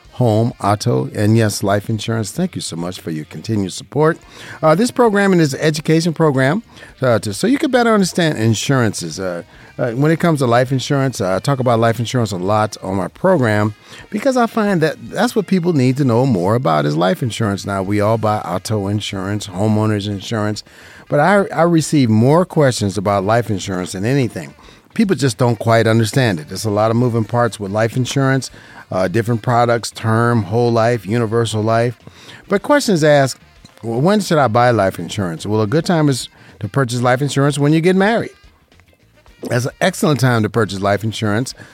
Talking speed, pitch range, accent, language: 195 wpm, 105-140 Hz, American, English